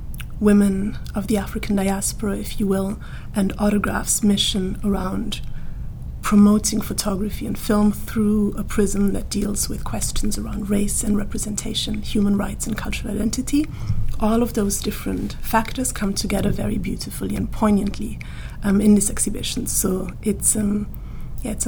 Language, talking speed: English, 140 wpm